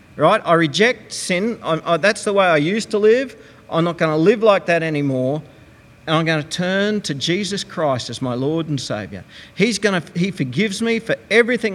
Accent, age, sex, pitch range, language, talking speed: Australian, 50-69, male, 125-170 Hz, English, 200 wpm